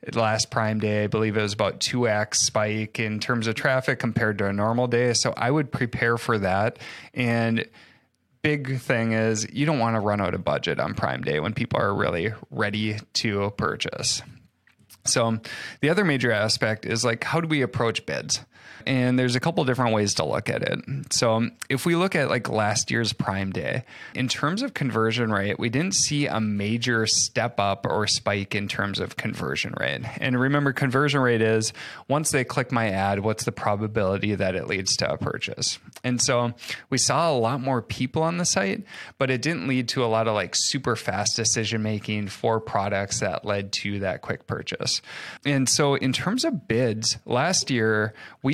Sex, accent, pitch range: male, American, 110-135 Hz